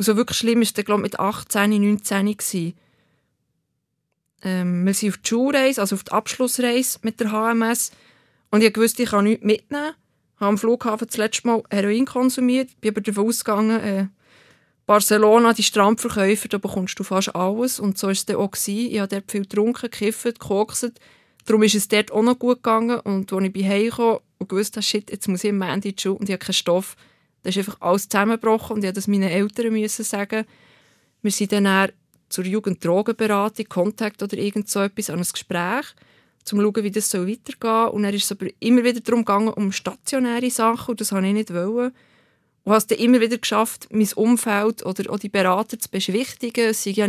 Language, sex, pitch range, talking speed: German, female, 195-225 Hz, 210 wpm